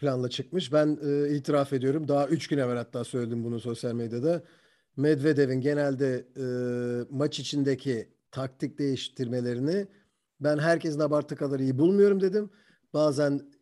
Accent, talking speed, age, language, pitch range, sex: native, 130 wpm, 50-69, Turkish, 140-170 Hz, male